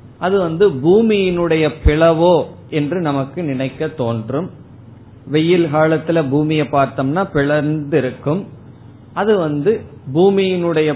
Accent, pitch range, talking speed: native, 120-155 Hz, 95 wpm